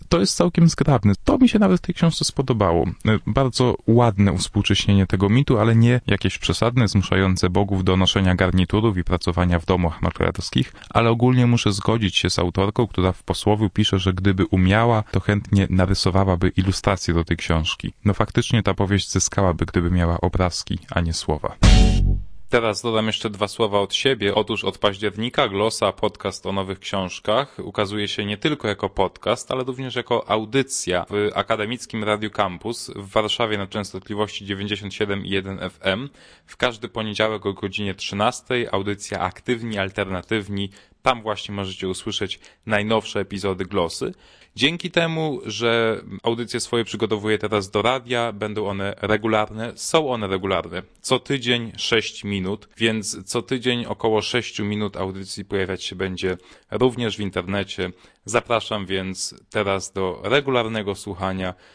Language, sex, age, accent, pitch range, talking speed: Polish, male, 20-39, native, 95-115 Hz, 150 wpm